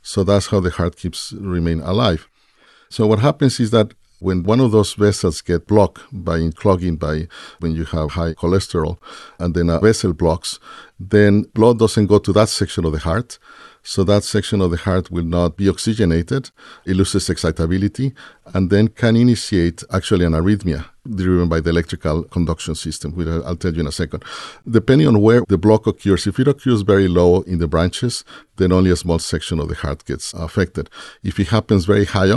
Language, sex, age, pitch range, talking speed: English, male, 50-69, 80-105 Hz, 195 wpm